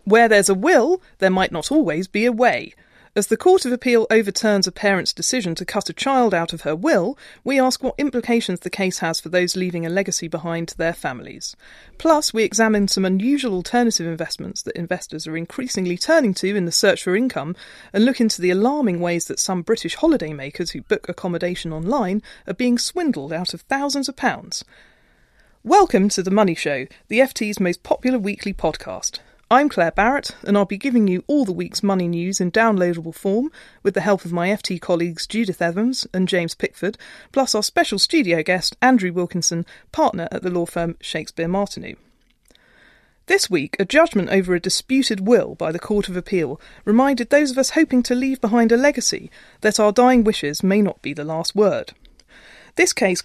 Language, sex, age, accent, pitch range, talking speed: English, female, 40-59, British, 180-245 Hz, 195 wpm